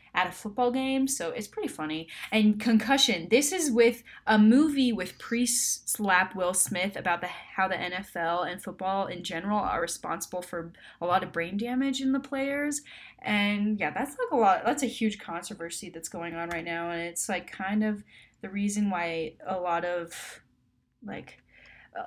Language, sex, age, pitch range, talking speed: English, female, 10-29, 180-235 Hz, 180 wpm